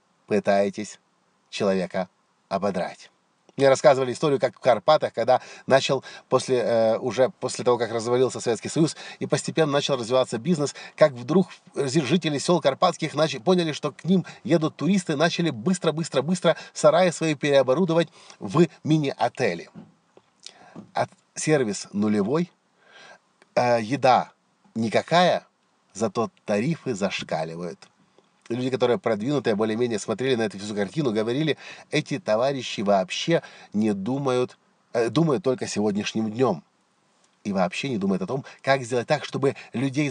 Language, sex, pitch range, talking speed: Russian, male, 125-175 Hz, 120 wpm